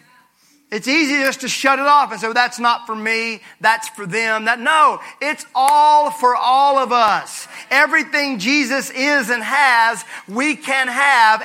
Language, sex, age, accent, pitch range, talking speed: English, male, 40-59, American, 190-270 Hz, 170 wpm